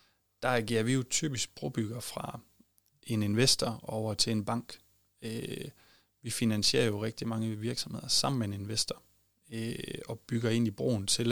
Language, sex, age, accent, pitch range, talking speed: Danish, male, 20-39, native, 105-120 Hz, 150 wpm